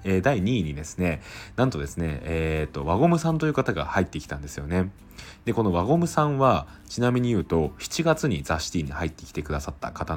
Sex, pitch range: male, 85-110 Hz